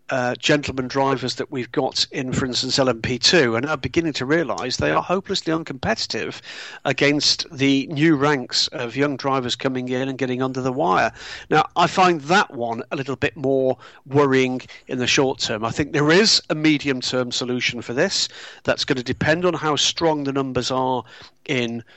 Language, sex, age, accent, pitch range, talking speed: English, male, 40-59, British, 120-150 Hz, 185 wpm